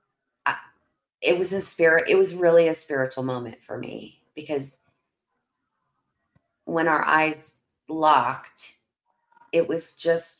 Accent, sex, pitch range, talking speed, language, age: American, female, 135-155 Hz, 115 wpm, English, 30-49